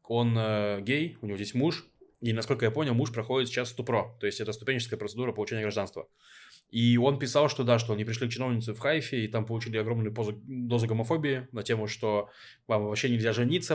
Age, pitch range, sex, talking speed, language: 20-39, 110-140 Hz, male, 210 wpm, Russian